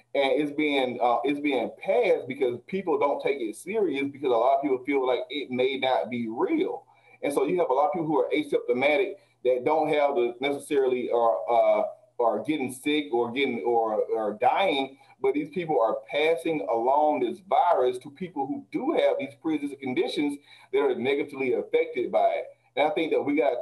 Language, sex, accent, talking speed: English, male, American, 205 wpm